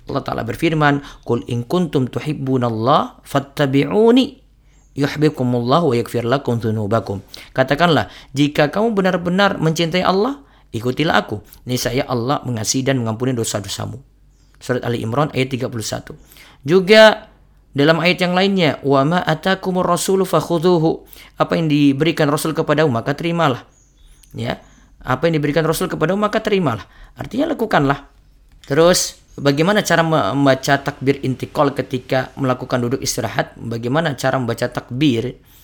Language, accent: Indonesian, native